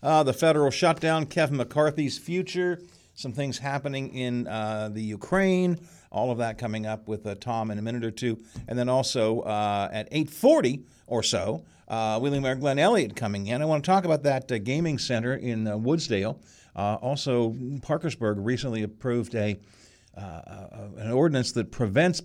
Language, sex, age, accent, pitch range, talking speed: English, male, 50-69, American, 110-145 Hz, 180 wpm